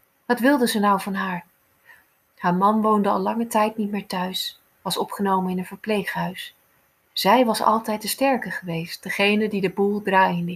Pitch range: 190-225 Hz